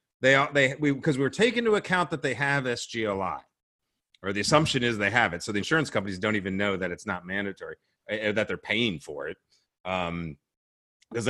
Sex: male